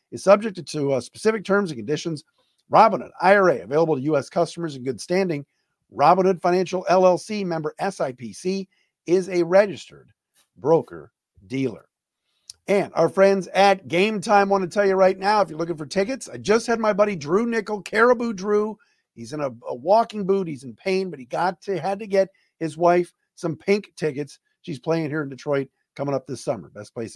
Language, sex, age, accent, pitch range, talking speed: English, male, 50-69, American, 145-195 Hz, 185 wpm